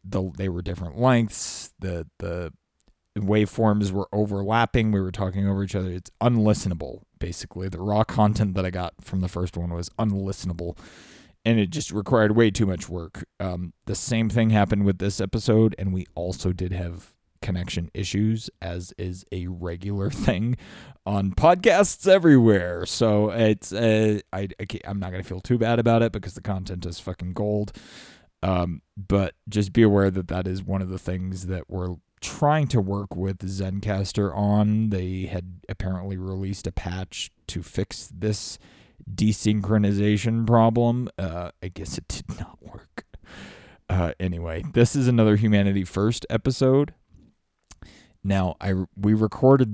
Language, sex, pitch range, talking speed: English, male, 90-105 Hz, 160 wpm